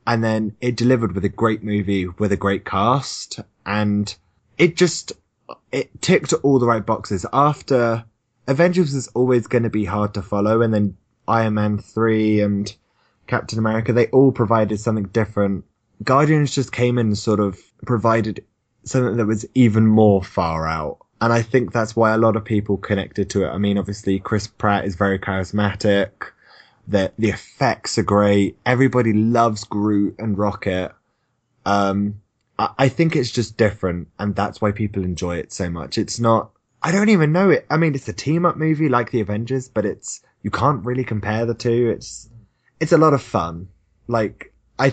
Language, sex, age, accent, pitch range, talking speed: English, male, 20-39, British, 100-120 Hz, 185 wpm